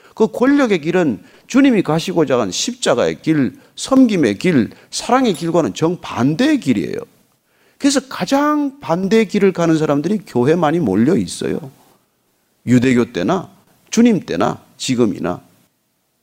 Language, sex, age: Korean, male, 40-59